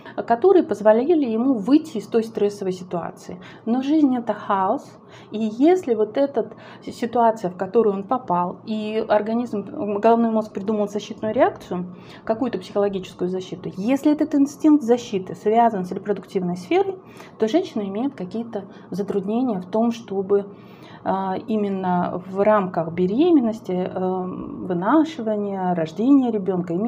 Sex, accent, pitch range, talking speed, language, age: female, native, 190-240 Hz, 120 wpm, Russian, 30-49